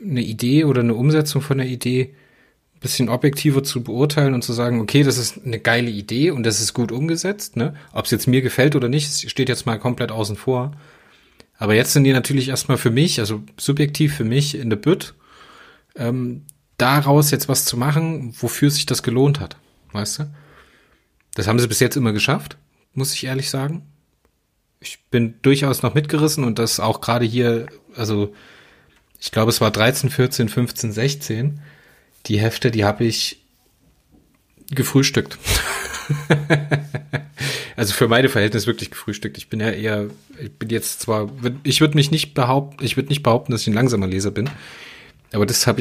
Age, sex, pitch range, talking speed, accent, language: 30-49, male, 115-140 Hz, 180 wpm, German, German